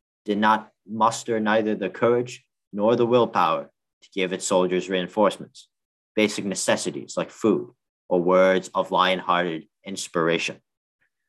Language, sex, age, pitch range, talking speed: English, male, 40-59, 90-115 Hz, 120 wpm